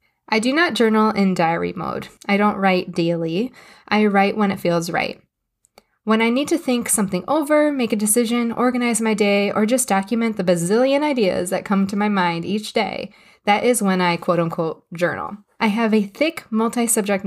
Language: English